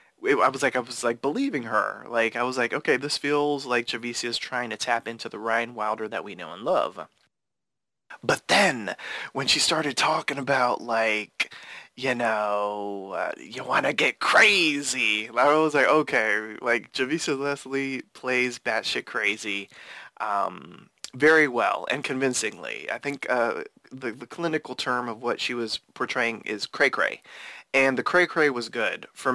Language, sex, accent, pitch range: English, male, American, 115-140 Hz